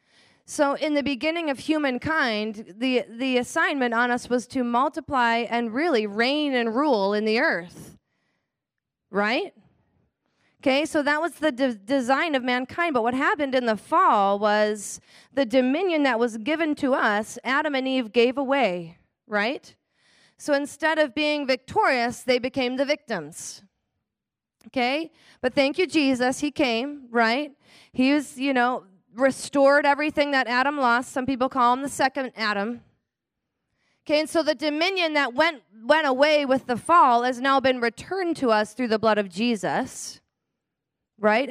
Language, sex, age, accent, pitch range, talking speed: English, female, 30-49, American, 235-290 Hz, 155 wpm